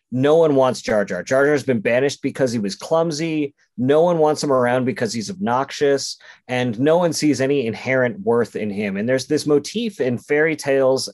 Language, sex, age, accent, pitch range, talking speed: English, male, 30-49, American, 120-150 Hz, 205 wpm